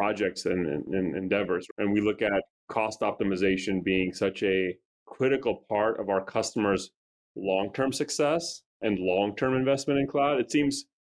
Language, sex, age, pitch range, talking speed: English, male, 30-49, 100-120 Hz, 150 wpm